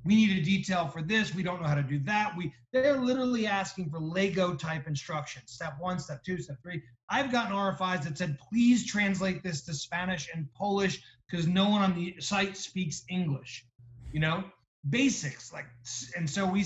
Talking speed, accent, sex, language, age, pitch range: 190 wpm, American, male, English, 30-49, 145-195 Hz